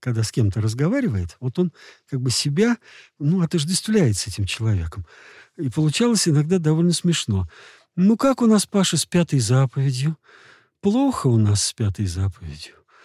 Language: Russian